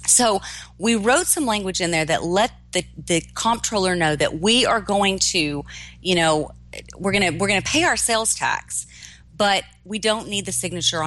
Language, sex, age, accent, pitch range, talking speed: English, female, 40-59, American, 140-205 Hz, 180 wpm